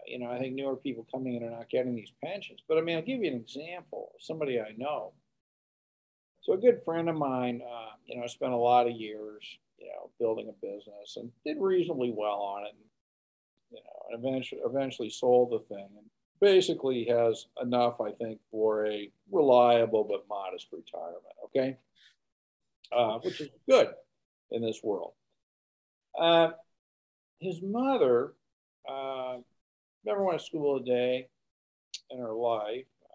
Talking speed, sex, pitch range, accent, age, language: 165 wpm, male, 115-165 Hz, American, 50-69, English